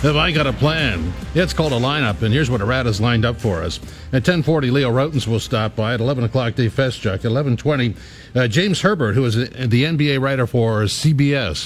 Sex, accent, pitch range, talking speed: male, American, 110-140 Hz, 220 wpm